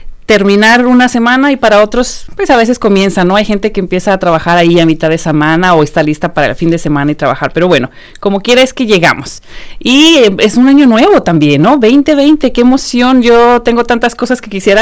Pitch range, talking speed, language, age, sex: 180-235 Hz, 225 wpm, English, 40-59, female